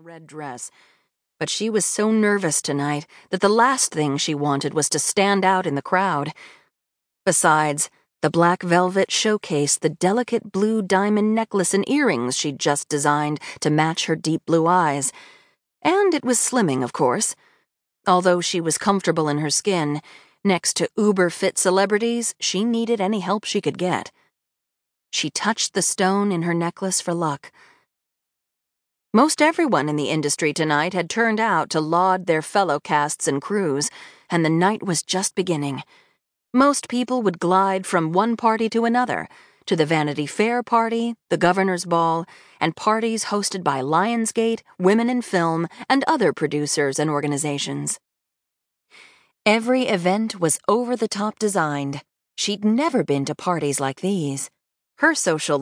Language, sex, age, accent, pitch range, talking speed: English, female, 40-59, American, 155-215 Hz, 155 wpm